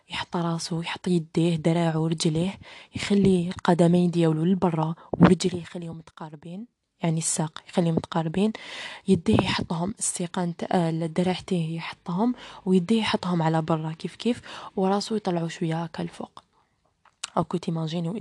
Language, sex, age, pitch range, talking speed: Arabic, female, 20-39, 170-195 Hz, 130 wpm